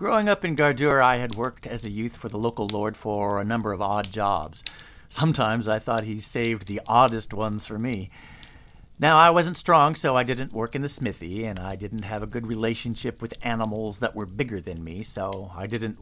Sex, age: male, 50-69